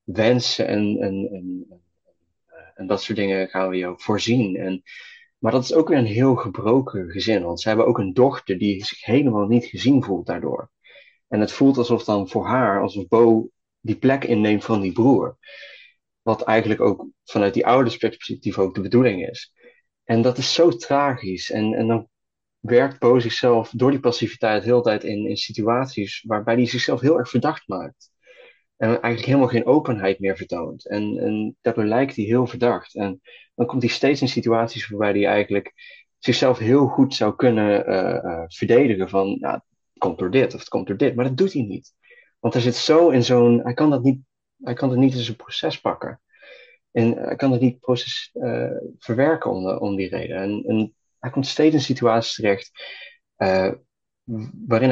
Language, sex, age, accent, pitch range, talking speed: Dutch, male, 30-49, Dutch, 105-130 Hz, 190 wpm